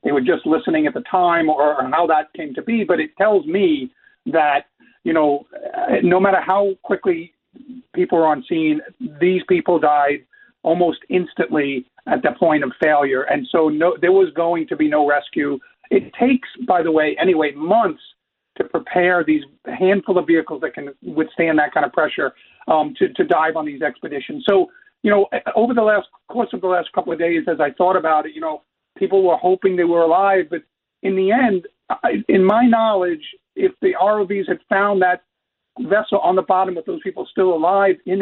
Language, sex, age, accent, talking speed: English, male, 50-69, American, 200 wpm